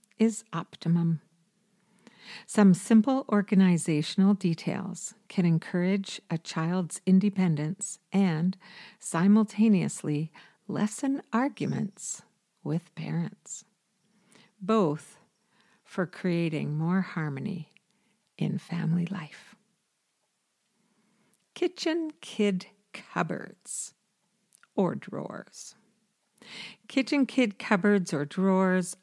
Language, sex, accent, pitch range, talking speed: English, female, American, 175-210 Hz, 70 wpm